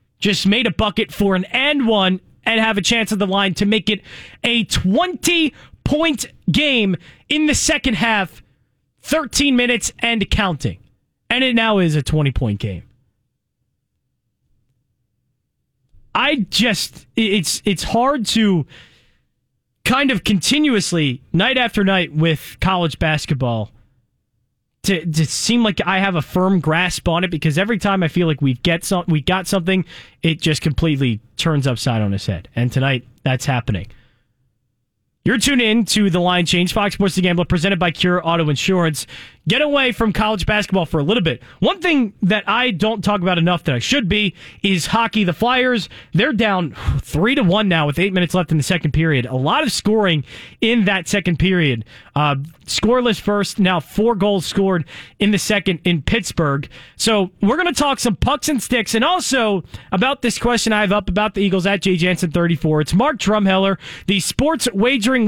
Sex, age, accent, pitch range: male, 20-39, American, 155-220 Hz